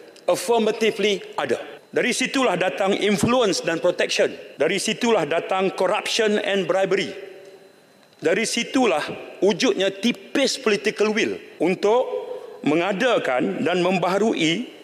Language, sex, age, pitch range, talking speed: English, male, 40-59, 180-255 Hz, 95 wpm